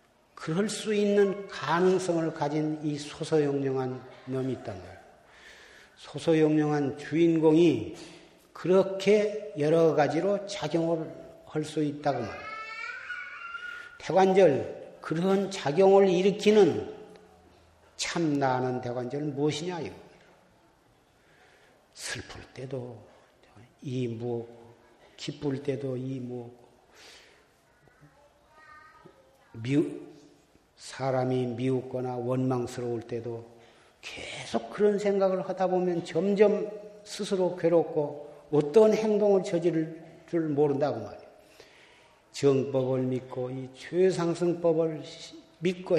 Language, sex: Korean, male